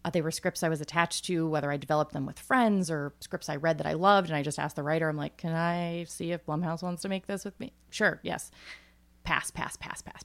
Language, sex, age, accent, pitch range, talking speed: English, female, 30-49, American, 145-185 Hz, 270 wpm